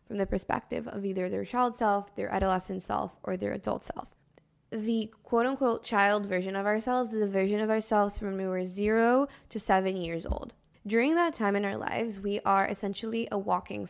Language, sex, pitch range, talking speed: English, female, 190-225 Hz, 200 wpm